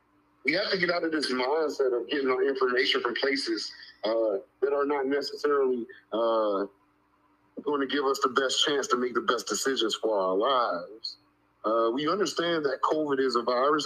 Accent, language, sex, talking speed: American, English, male, 185 wpm